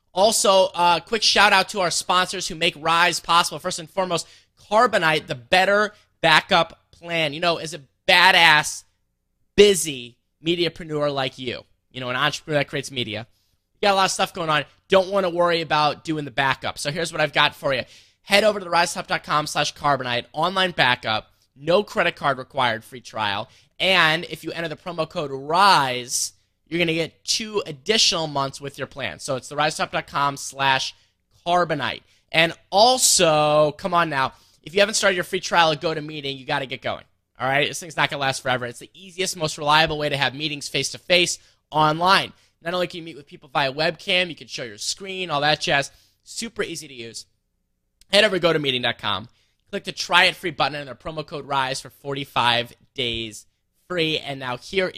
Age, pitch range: 20-39, 130-175 Hz